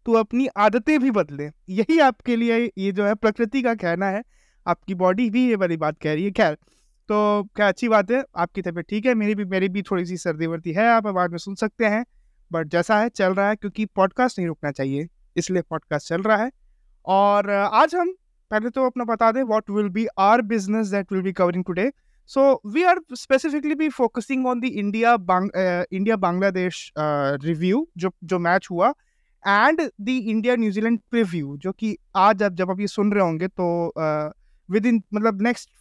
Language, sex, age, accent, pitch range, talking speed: Hindi, male, 20-39, native, 180-250 Hz, 200 wpm